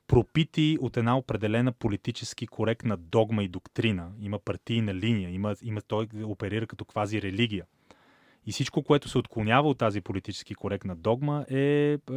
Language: Bulgarian